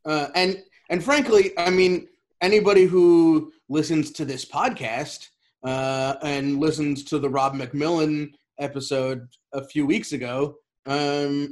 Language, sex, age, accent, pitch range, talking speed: English, male, 30-49, American, 130-160 Hz, 130 wpm